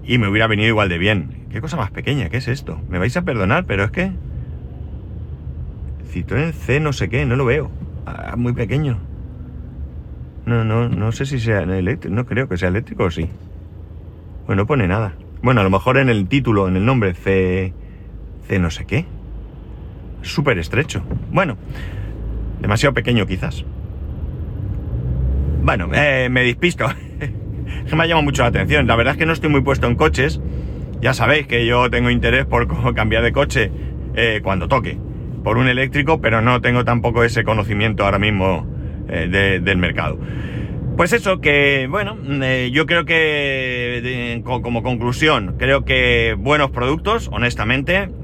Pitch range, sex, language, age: 95-130 Hz, male, Spanish, 30-49